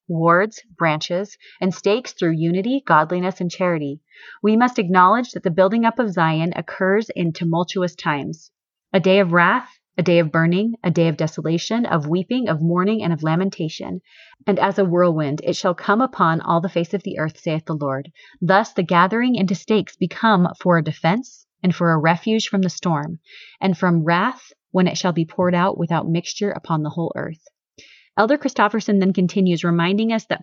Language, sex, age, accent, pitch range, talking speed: English, female, 30-49, American, 165-210 Hz, 190 wpm